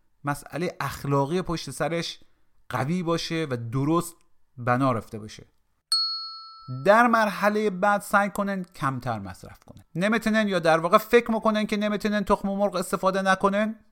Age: 40-59